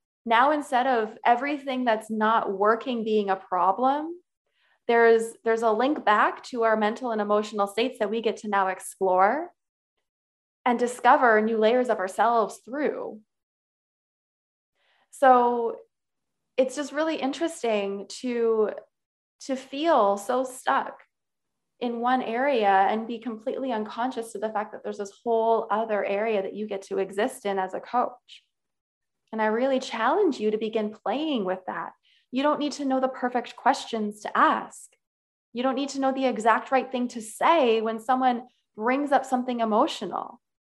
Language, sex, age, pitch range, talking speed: English, female, 20-39, 215-260 Hz, 155 wpm